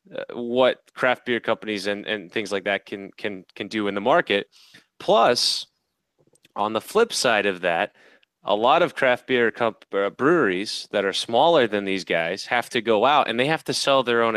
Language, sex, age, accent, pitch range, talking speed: English, male, 20-39, American, 100-125 Hz, 205 wpm